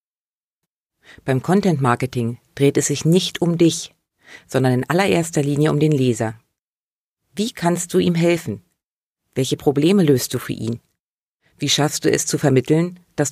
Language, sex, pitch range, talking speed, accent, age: German, female, 125-165 Hz, 150 wpm, German, 40-59